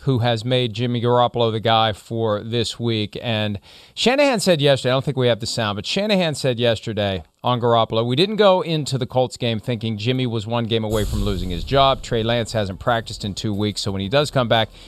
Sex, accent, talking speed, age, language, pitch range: male, American, 230 wpm, 40-59, English, 110-135 Hz